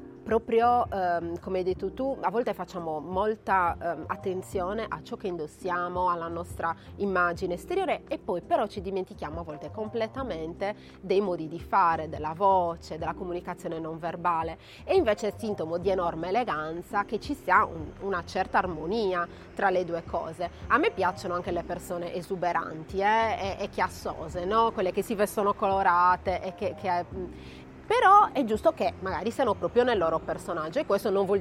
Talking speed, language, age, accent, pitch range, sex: 170 wpm, Italian, 30-49, native, 170-210 Hz, female